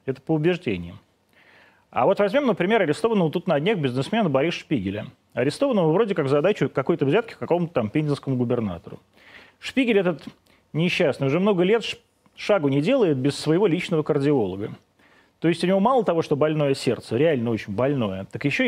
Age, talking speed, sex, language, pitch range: 30-49, 165 wpm, male, Russian, 125-170 Hz